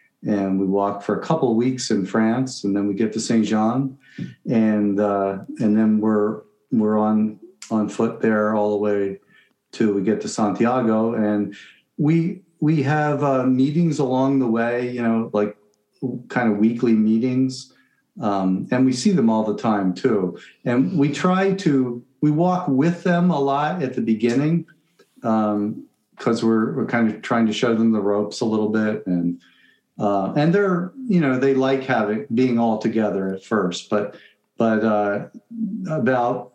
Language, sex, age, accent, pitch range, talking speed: English, male, 50-69, American, 105-130 Hz, 175 wpm